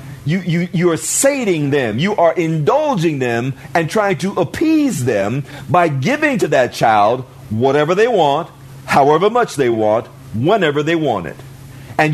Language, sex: English, male